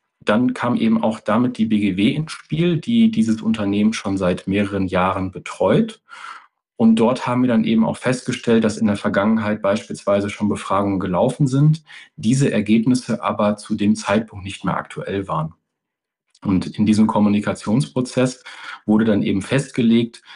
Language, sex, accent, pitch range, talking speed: German, male, German, 105-130 Hz, 155 wpm